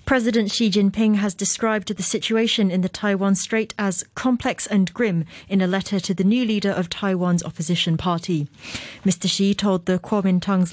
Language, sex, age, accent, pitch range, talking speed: English, female, 30-49, British, 185-230 Hz, 175 wpm